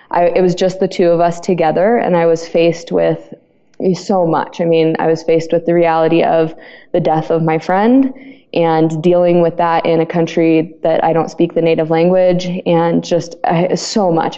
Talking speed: 200 wpm